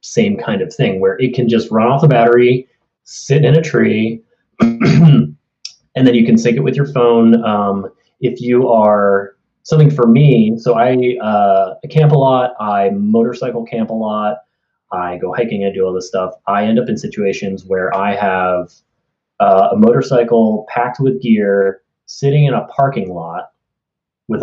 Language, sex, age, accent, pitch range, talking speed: English, male, 30-49, American, 100-155 Hz, 175 wpm